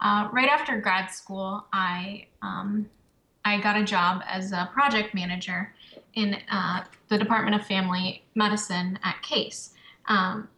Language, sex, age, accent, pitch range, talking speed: English, female, 10-29, American, 190-220 Hz, 140 wpm